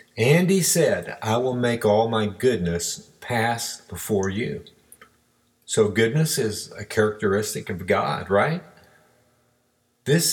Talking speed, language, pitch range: 120 wpm, English, 105-145 Hz